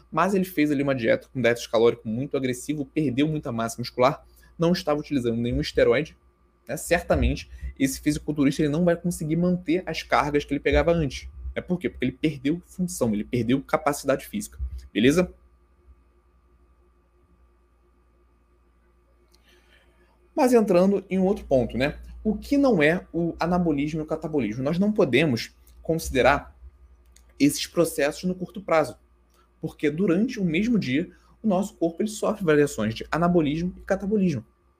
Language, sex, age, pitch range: Portuguese, male, 20-39, 115-180 Hz